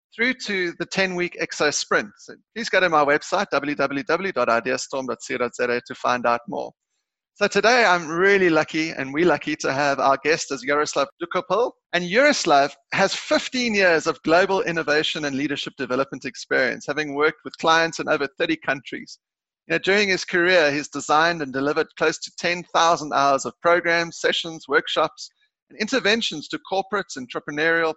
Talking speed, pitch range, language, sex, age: 155 wpm, 145-190 Hz, English, male, 30-49